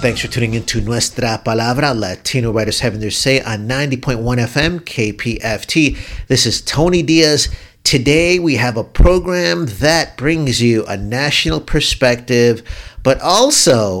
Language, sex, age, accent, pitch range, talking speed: English, male, 50-69, American, 105-140 Hz, 140 wpm